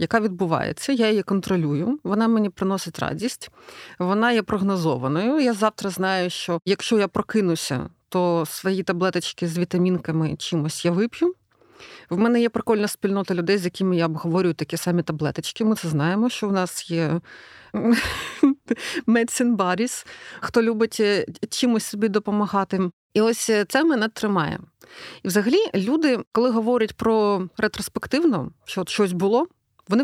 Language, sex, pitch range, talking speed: Ukrainian, female, 180-230 Hz, 140 wpm